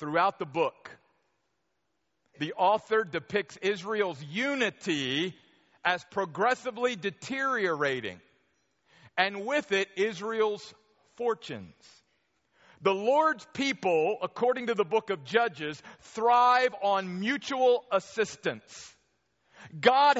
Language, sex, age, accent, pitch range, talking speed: English, male, 50-69, American, 195-235 Hz, 90 wpm